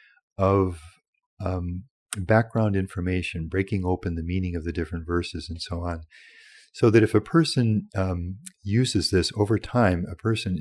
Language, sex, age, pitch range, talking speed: English, male, 40-59, 85-105 Hz, 155 wpm